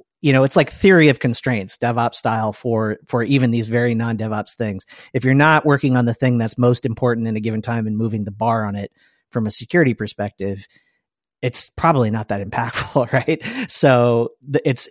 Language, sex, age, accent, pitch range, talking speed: English, male, 30-49, American, 115-140 Hz, 195 wpm